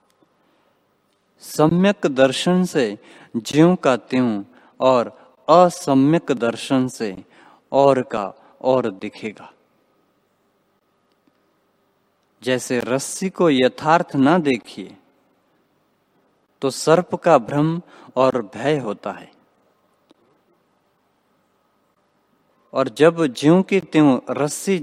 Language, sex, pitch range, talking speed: Hindi, male, 120-155 Hz, 80 wpm